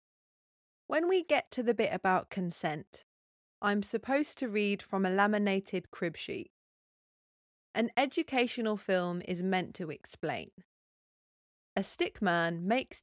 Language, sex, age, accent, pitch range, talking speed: English, female, 30-49, British, 185-255 Hz, 130 wpm